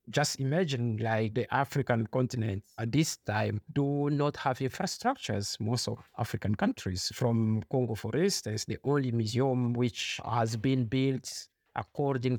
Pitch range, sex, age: 115-150 Hz, male, 50-69